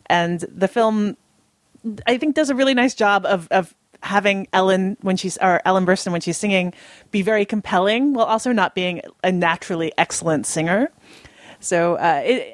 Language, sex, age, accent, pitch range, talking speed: English, female, 30-49, American, 170-205 Hz, 170 wpm